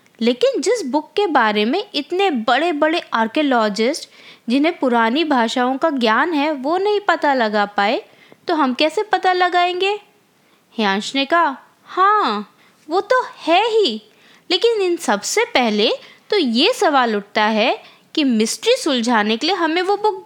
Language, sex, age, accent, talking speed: Hindi, female, 20-39, native, 150 wpm